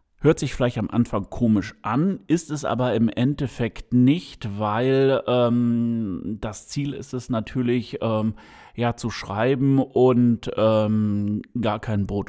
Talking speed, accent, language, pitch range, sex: 140 wpm, German, German, 105-130 Hz, male